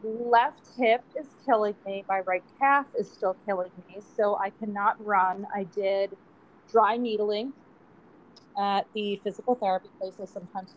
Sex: female